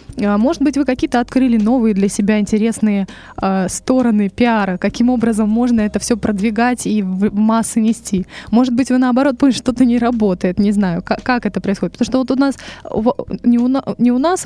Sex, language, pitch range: female, Russian, 210-250 Hz